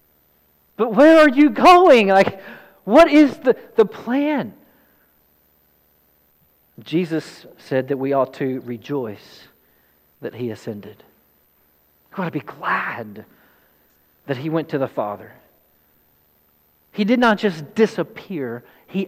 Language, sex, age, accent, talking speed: English, male, 40-59, American, 120 wpm